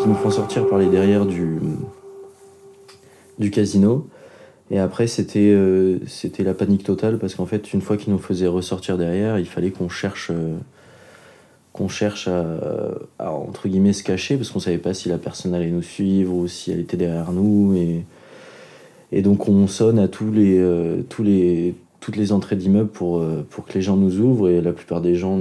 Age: 30-49